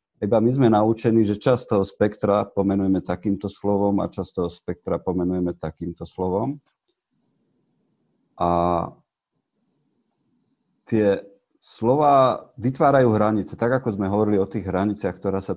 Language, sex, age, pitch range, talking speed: Slovak, male, 50-69, 95-115 Hz, 125 wpm